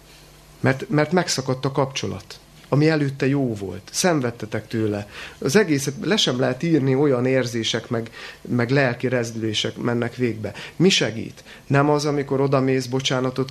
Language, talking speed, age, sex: Hungarian, 145 wpm, 30-49, male